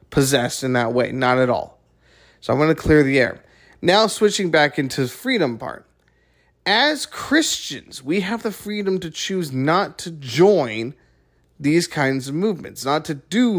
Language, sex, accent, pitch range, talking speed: English, male, American, 125-165 Hz, 170 wpm